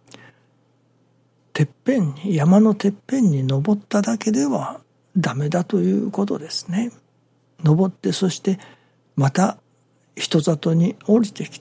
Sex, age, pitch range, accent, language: male, 60-79, 135-200 Hz, native, Japanese